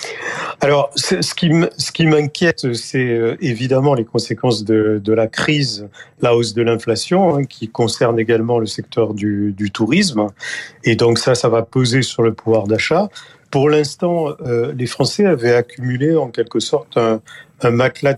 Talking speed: 160 wpm